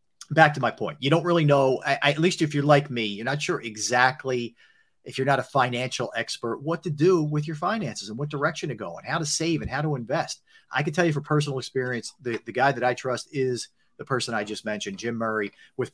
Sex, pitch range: male, 115-150 Hz